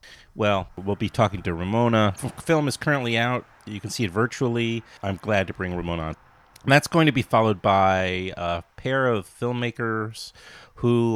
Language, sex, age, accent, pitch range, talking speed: English, male, 30-49, American, 90-115 Hz, 175 wpm